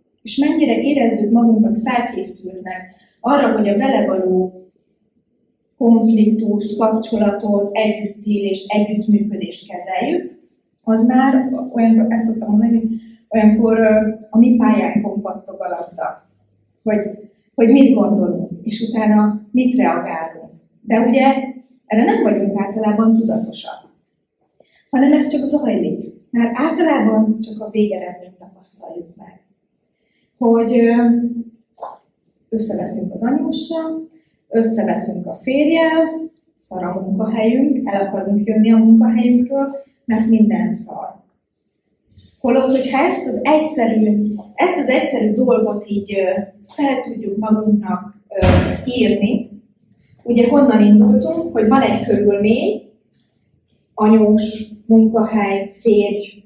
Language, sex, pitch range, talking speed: Hungarian, female, 205-240 Hz, 100 wpm